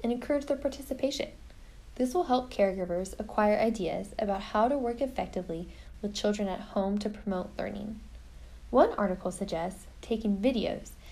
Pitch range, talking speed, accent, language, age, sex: 185-245 Hz, 145 wpm, American, English, 10-29, female